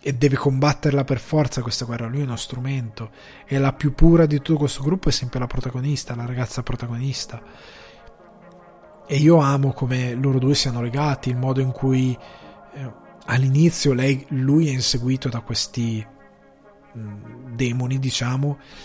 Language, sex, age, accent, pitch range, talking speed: Italian, male, 20-39, native, 120-145 Hz, 155 wpm